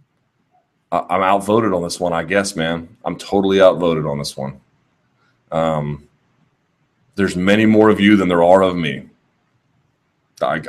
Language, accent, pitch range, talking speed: English, American, 85-105 Hz, 145 wpm